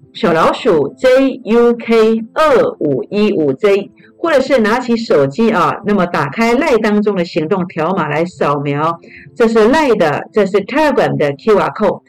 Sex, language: female, Chinese